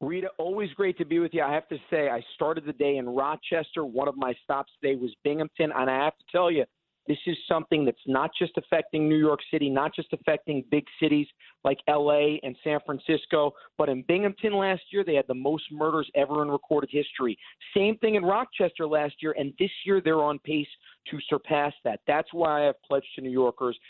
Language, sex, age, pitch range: English, male, 40-59, 130-155 Hz